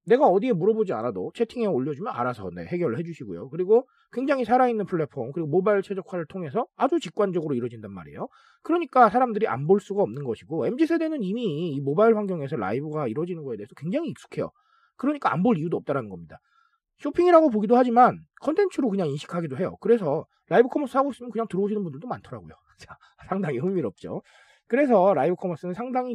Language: Korean